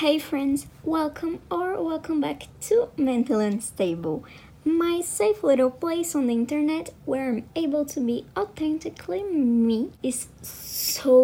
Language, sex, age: English, male, 20-39